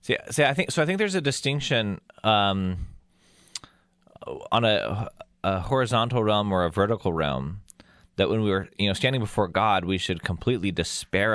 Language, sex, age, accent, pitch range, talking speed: English, male, 20-39, American, 90-110 Hz, 175 wpm